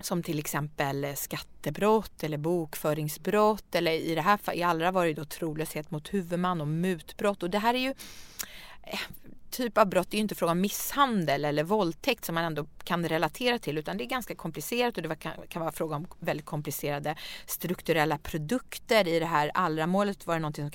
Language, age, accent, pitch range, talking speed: English, 30-49, Swedish, 155-210 Hz, 190 wpm